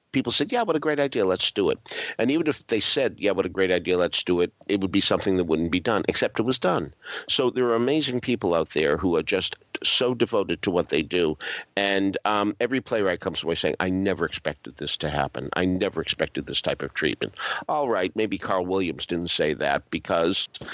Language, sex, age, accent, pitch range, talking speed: English, male, 50-69, American, 90-125 Hz, 230 wpm